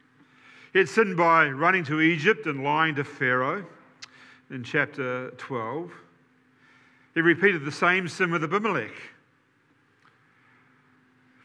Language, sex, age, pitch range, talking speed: English, male, 50-69, 130-165 Hz, 115 wpm